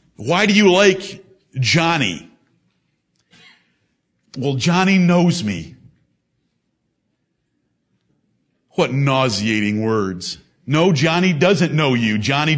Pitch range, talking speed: 145-190 Hz, 85 wpm